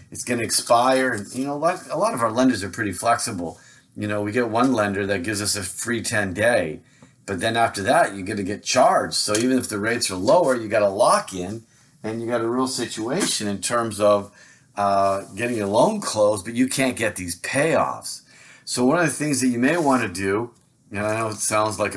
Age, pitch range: 50-69, 100-125 Hz